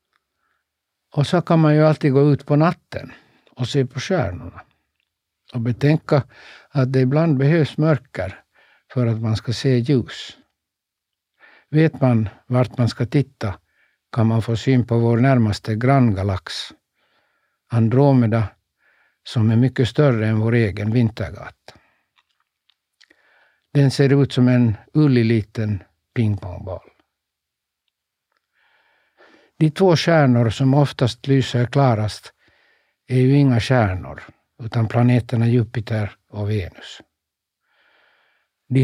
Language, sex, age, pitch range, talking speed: Swedish, male, 60-79, 110-130 Hz, 115 wpm